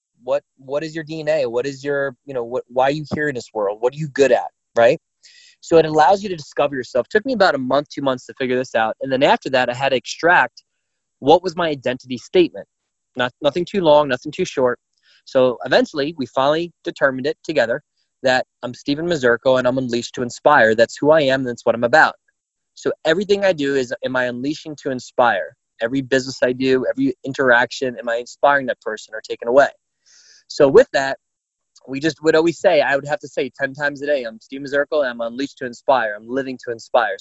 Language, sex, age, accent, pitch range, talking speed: English, male, 20-39, American, 125-155 Hz, 225 wpm